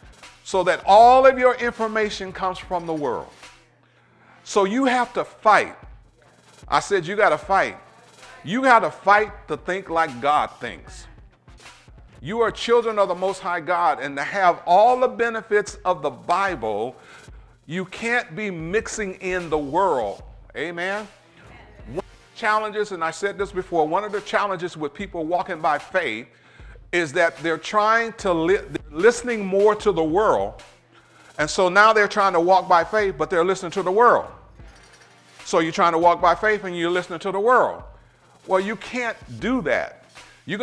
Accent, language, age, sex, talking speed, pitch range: American, English, 50-69, male, 170 wpm, 165-215 Hz